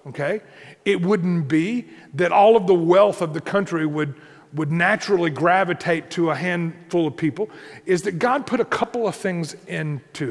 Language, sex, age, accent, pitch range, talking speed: English, male, 40-59, American, 160-215 Hz, 175 wpm